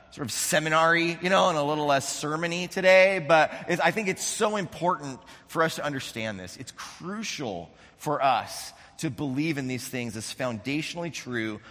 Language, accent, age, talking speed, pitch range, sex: English, American, 30-49, 175 wpm, 125-160 Hz, male